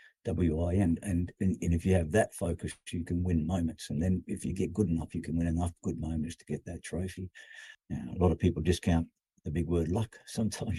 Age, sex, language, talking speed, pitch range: 50-69, male, English, 230 wpm, 80-90 Hz